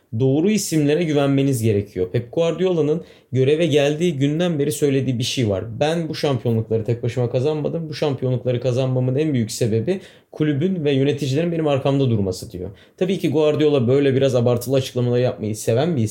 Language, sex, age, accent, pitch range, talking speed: Turkish, male, 30-49, native, 120-150 Hz, 160 wpm